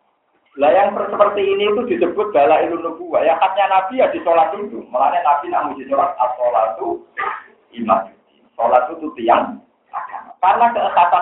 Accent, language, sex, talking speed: native, Indonesian, male, 150 wpm